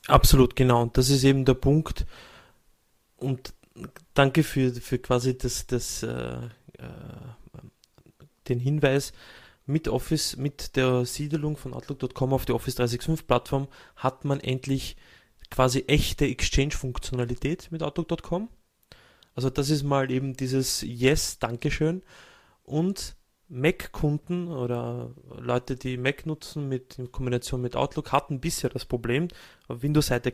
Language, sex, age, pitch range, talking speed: German, male, 20-39, 125-145 Hz, 130 wpm